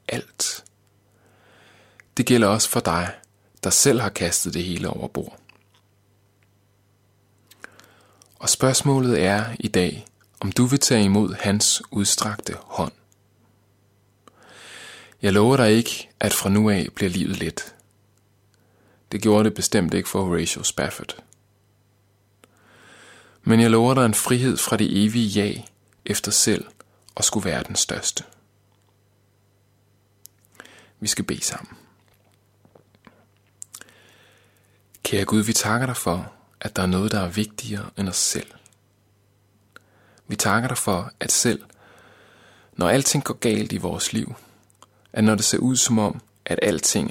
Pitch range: 100-110 Hz